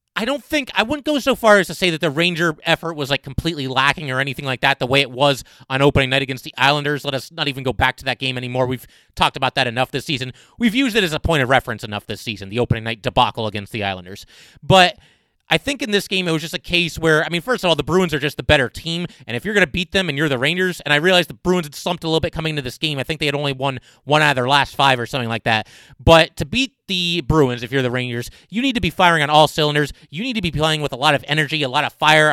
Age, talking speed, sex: 30-49, 305 wpm, male